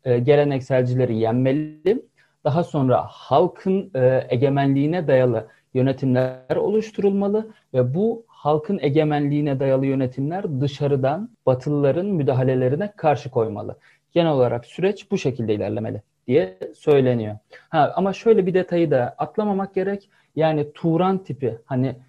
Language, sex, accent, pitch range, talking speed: Turkish, male, native, 130-175 Hz, 110 wpm